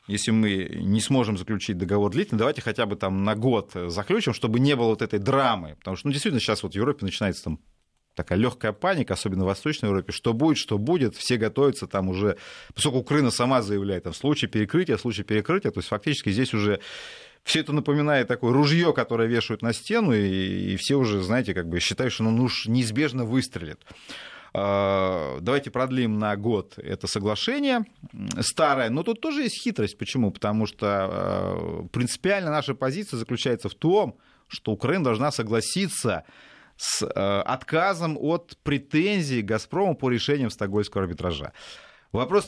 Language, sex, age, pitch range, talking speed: Russian, male, 30-49, 100-140 Hz, 165 wpm